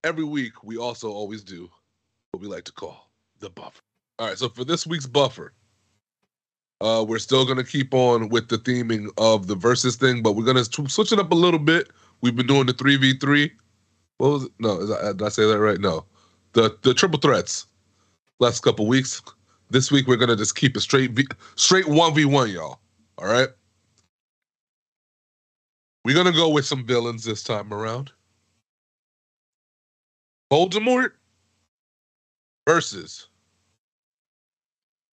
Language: English